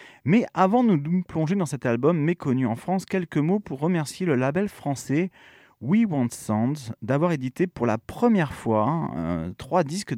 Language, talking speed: French, 175 wpm